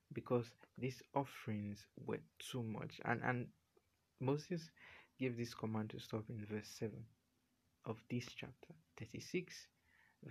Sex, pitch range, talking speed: male, 110-145 Hz, 120 wpm